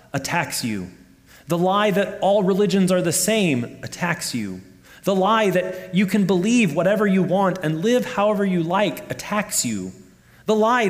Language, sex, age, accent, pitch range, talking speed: English, male, 30-49, American, 120-175 Hz, 165 wpm